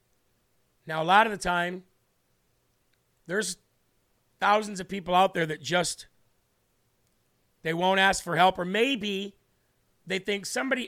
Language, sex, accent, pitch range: English, male, American, 160-205 Hz